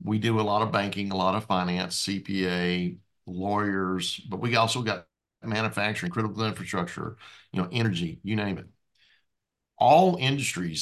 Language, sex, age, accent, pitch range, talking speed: English, male, 50-69, American, 95-135 Hz, 150 wpm